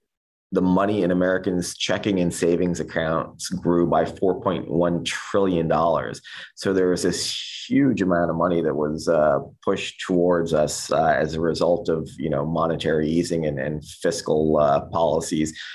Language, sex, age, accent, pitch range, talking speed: English, male, 30-49, American, 80-90 Hz, 155 wpm